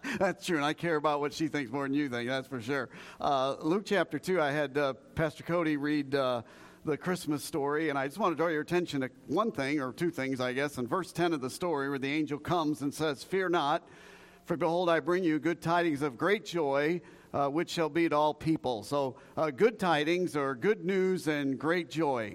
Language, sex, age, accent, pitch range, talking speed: English, male, 50-69, American, 140-175 Hz, 235 wpm